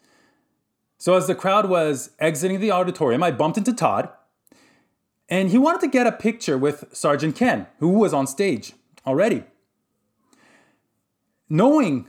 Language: English